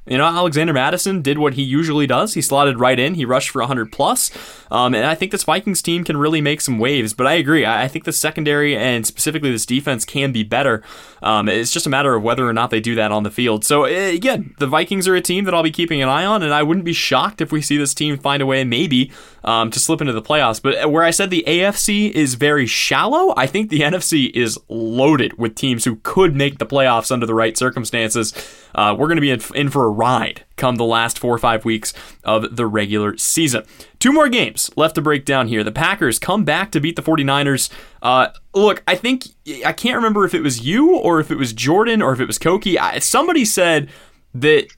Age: 10-29